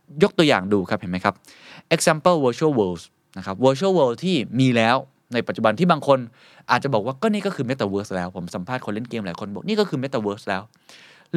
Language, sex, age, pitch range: Thai, male, 20-39, 110-170 Hz